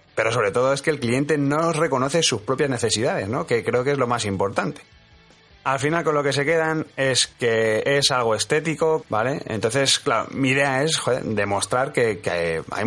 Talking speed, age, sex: 200 wpm, 30-49, male